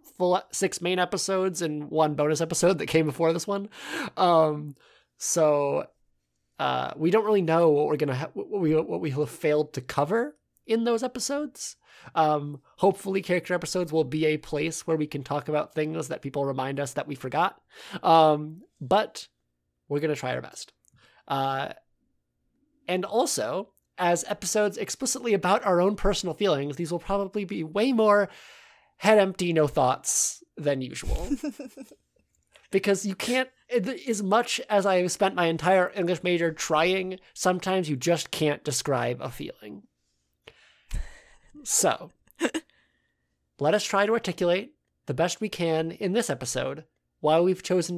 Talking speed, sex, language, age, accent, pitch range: 155 wpm, male, English, 20-39, American, 150-200 Hz